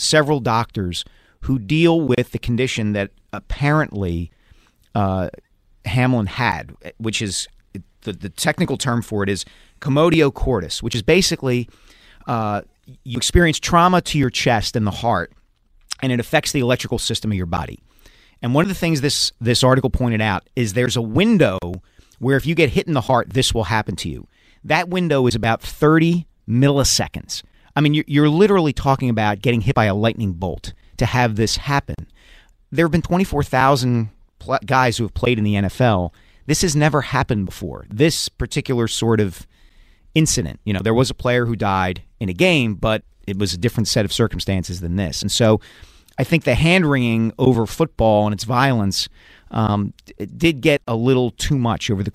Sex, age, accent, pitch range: male, 40-59, American, 105-135 Hz